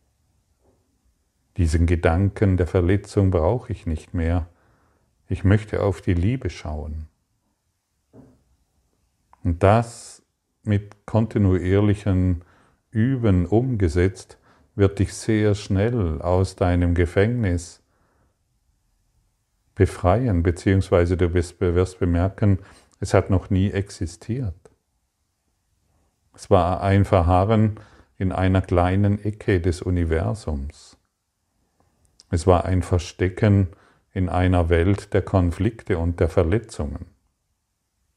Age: 50-69